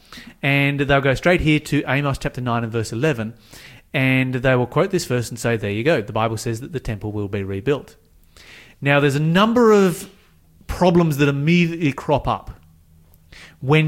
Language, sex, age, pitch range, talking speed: English, male, 30-49, 115-165 Hz, 185 wpm